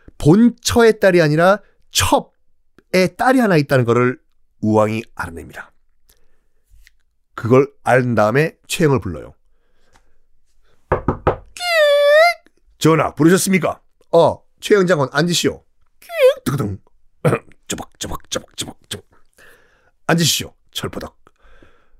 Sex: male